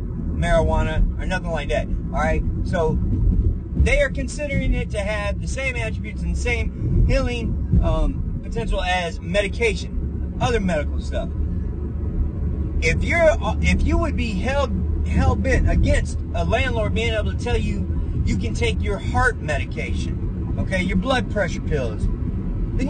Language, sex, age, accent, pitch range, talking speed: English, male, 30-49, American, 65-90 Hz, 145 wpm